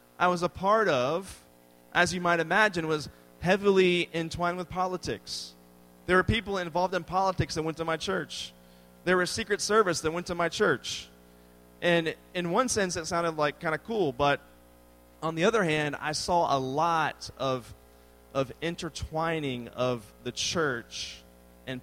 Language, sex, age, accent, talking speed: English, male, 30-49, American, 165 wpm